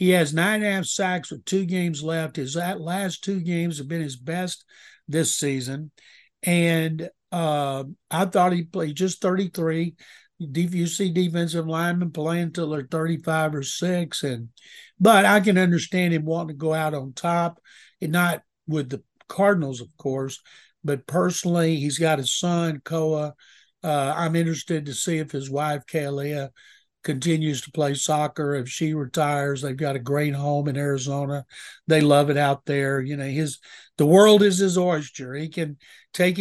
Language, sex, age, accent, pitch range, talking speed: English, male, 60-79, American, 150-180 Hz, 175 wpm